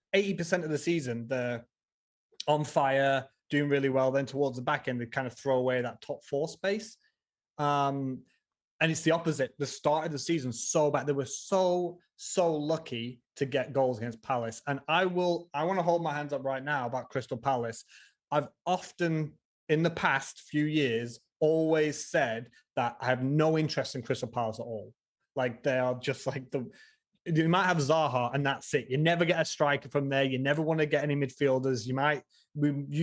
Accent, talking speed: British, 200 wpm